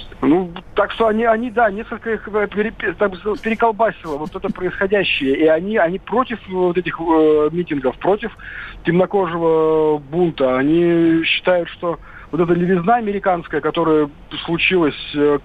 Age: 40-59